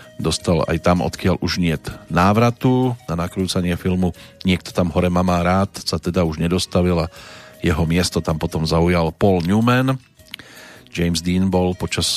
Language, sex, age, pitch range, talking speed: Slovak, male, 40-59, 85-95 Hz, 155 wpm